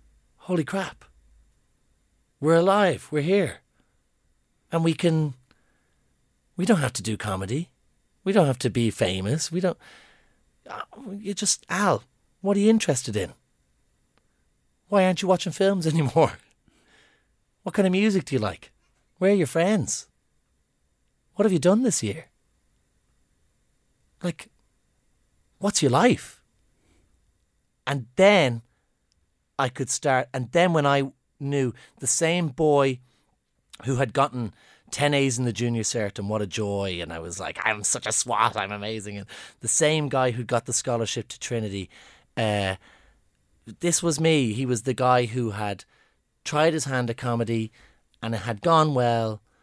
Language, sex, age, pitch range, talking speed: English, male, 40-59, 105-155 Hz, 150 wpm